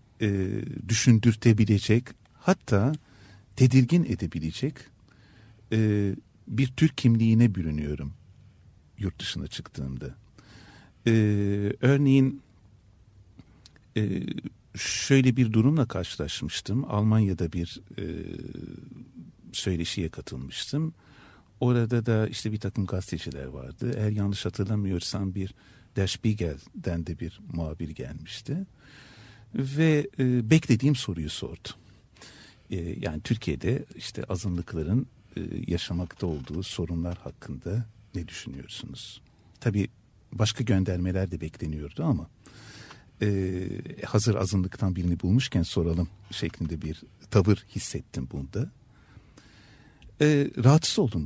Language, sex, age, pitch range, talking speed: Turkish, male, 50-69, 90-120 Hz, 90 wpm